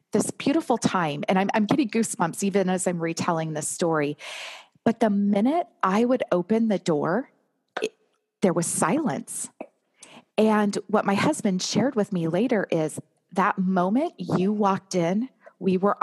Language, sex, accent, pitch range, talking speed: English, female, American, 165-210 Hz, 155 wpm